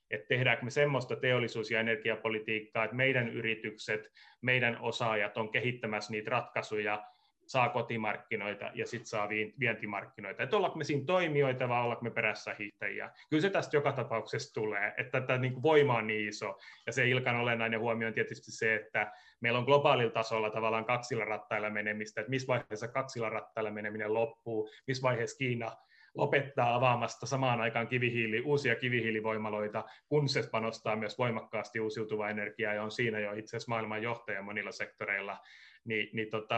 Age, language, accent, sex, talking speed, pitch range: 30-49, Finnish, native, male, 155 wpm, 110-125 Hz